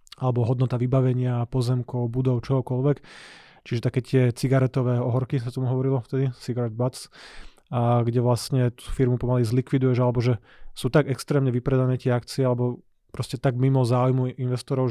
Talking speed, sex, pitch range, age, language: 155 wpm, male, 125-130 Hz, 20-39, Slovak